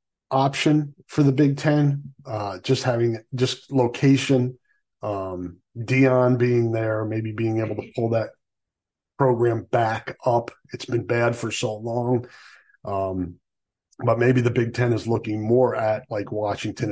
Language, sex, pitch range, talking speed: English, male, 105-125 Hz, 145 wpm